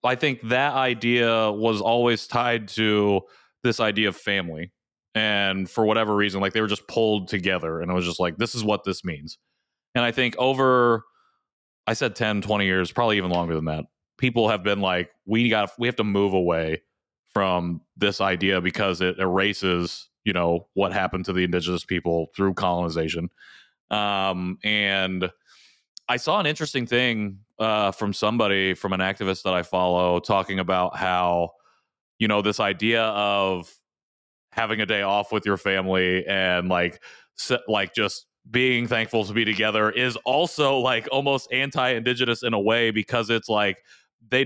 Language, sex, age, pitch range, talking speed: English, male, 30-49, 95-115 Hz, 165 wpm